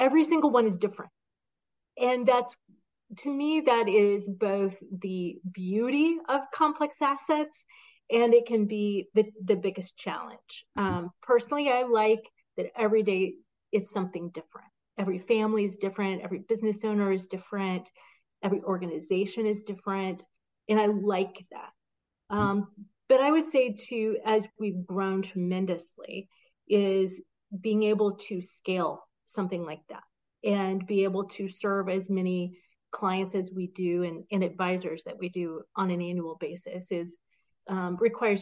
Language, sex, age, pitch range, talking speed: English, female, 30-49, 190-225 Hz, 145 wpm